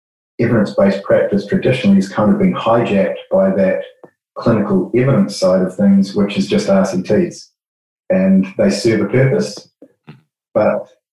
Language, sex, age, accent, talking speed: English, male, 30-49, Australian, 135 wpm